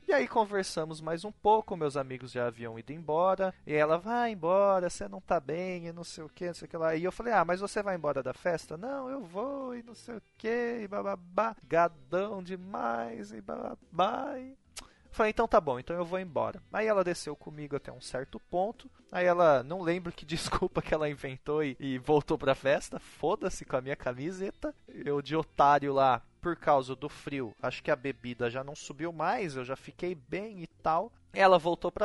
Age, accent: 20-39, Brazilian